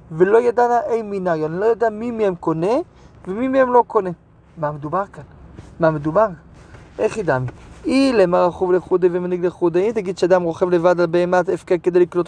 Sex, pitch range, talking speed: male, 175-210 Hz, 195 wpm